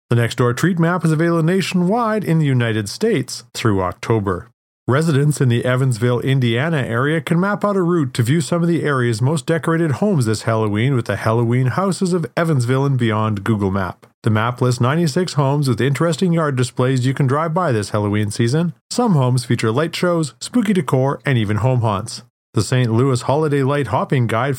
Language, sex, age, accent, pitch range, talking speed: English, male, 40-59, American, 115-160 Hz, 195 wpm